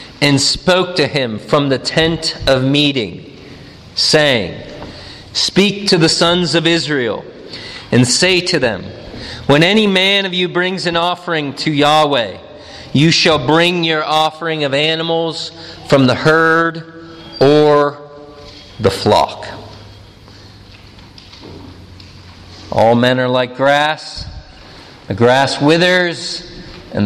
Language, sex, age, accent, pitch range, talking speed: English, male, 40-59, American, 115-150 Hz, 115 wpm